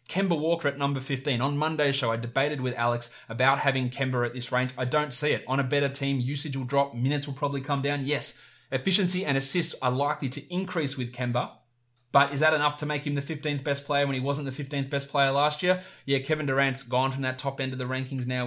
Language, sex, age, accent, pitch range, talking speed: English, male, 20-39, Australian, 125-145 Hz, 245 wpm